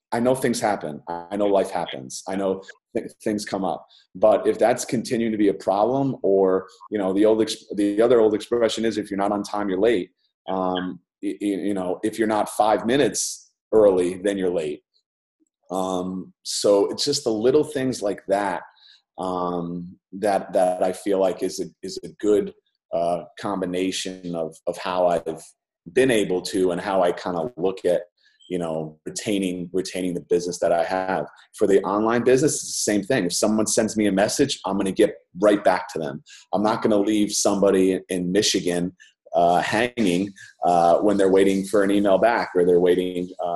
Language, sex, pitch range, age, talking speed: English, male, 90-105 Hz, 30-49, 190 wpm